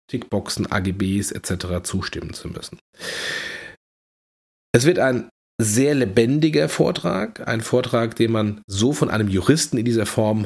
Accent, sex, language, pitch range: German, male, German, 105-125 Hz